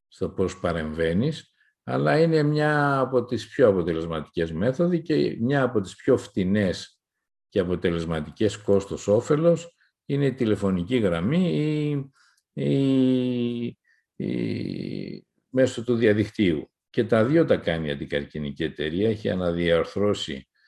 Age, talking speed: 50-69, 105 wpm